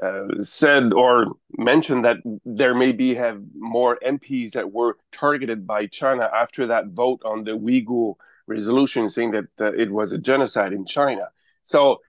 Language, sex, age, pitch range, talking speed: English, male, 30-49, 115-135 Hz, 165 wpm